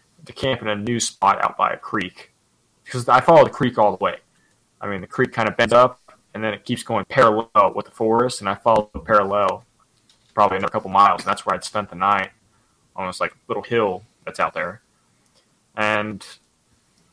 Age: 20-39